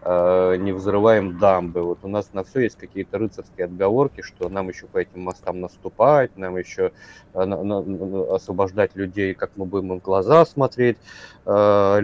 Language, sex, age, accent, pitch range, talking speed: Russian, male, 30-49, native, 95-110 Hz, 165 wpm